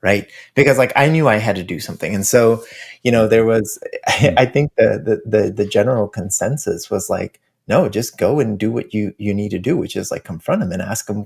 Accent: American